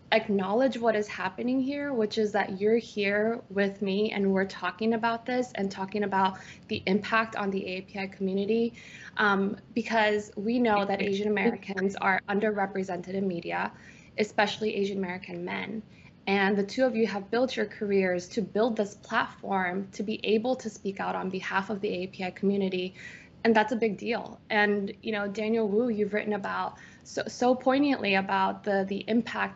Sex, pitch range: female, 195-220 Hz